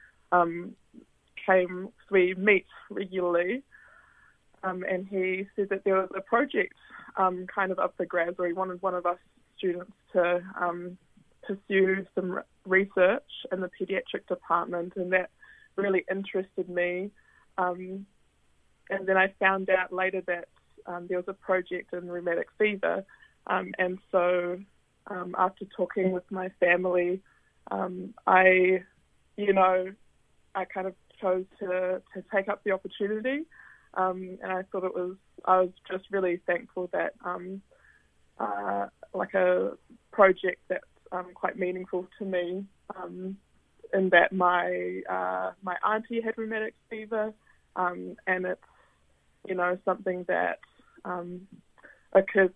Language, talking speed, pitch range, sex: English, 140 wpm, 180-195 Hz, female